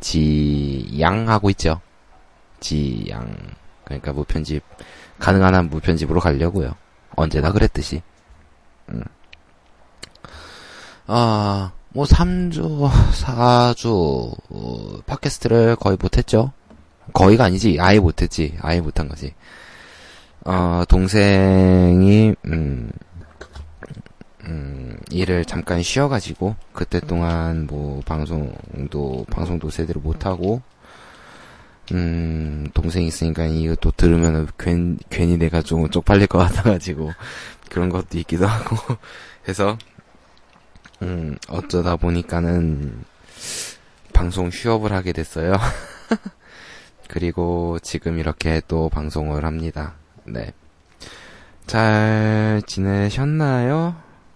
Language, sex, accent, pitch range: Korean, male, native, 80-100 Hz